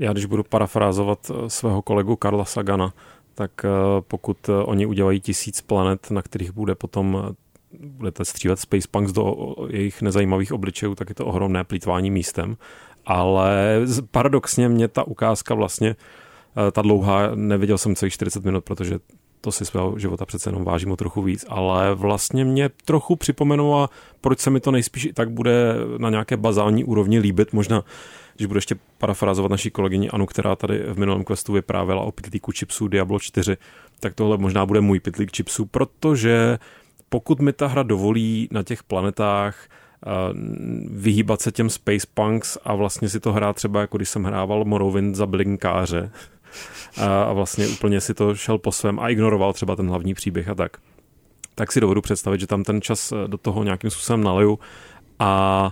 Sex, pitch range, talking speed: male, 100-110 Hz, 170 wpm